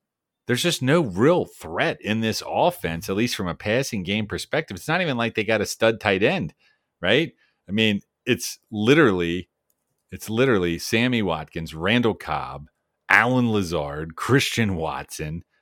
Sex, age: male, 40-59